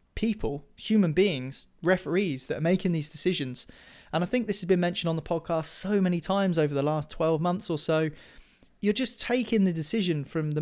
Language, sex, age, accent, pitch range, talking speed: English, male, 30-49, British, 155-195 Hz, 205 wpm